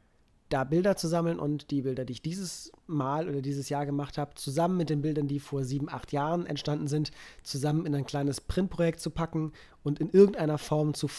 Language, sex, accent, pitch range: English, male, German, 130-155 Hz